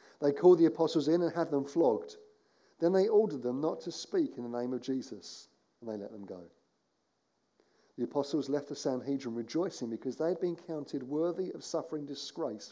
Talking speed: 195 wpm